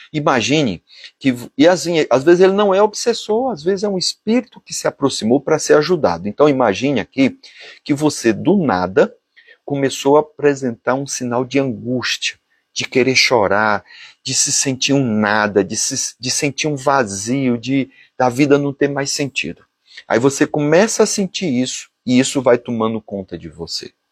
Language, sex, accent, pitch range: Portuguese, male, Brazilian, 120-175 Hz